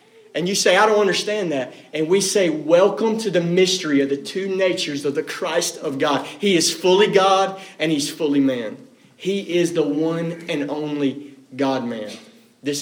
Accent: American